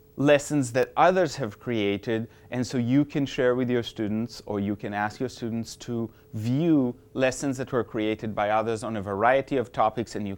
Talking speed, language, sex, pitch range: 195 wpm, English, male, 110-155 Hz